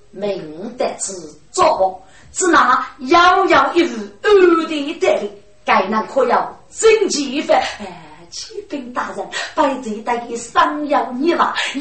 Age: 30-49